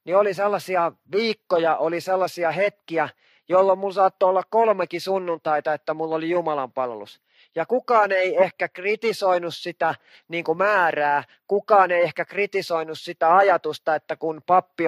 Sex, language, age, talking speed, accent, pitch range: male, Finnish, 30-49, 140 wpm, native, 155-190 Hz